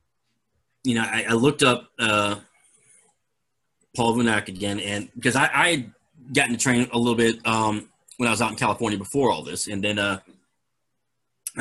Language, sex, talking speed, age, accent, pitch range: English, male, 175 wpm, 30-49, American, 105-125 Hz